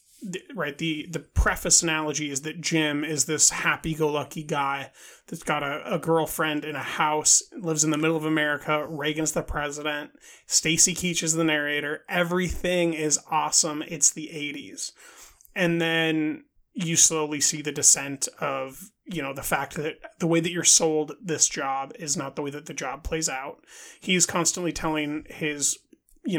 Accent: American